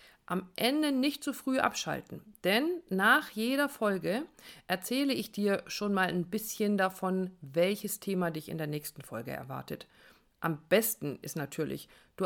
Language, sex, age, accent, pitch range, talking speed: German, female, 50-69, German, 180-240 Hz, 150 wpm